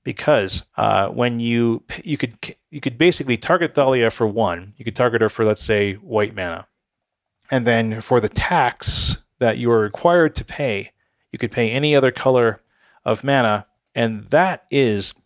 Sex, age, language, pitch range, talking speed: male, 40-59, English, 110-140 Hz, 175 wpm